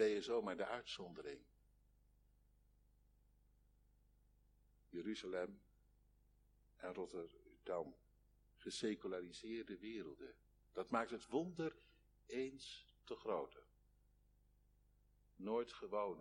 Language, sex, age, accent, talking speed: Dutch, male, 60-79, Dutch, 70 wpm